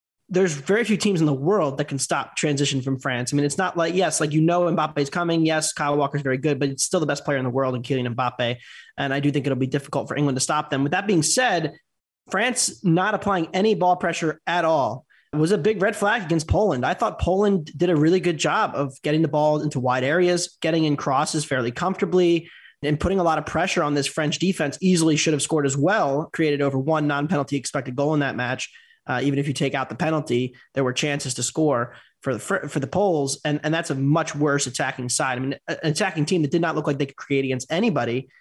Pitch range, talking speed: 140-170 Hz, 250 wpm